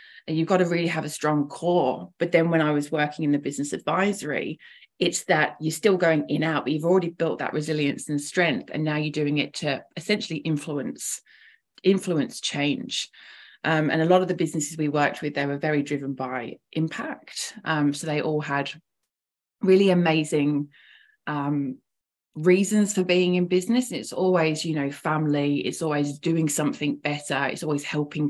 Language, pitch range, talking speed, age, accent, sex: English, 150-180 Hz, 180 wpm, 20-39, British, female